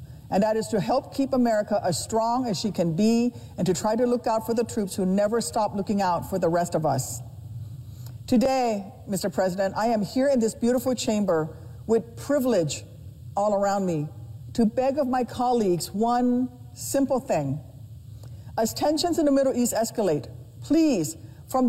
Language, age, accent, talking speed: English, 50-69, American, 175 wpm